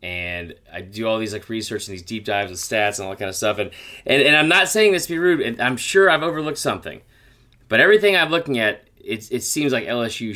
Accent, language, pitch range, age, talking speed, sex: American, English, 120-180 Hz, 30-49, 260 wpm, male